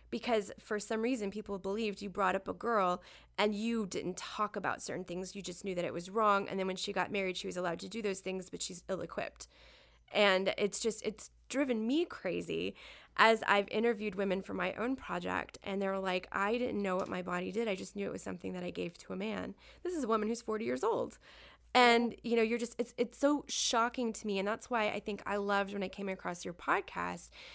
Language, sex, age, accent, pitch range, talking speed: English, female, 20-39, American, 190-235 Hz, 240 wpm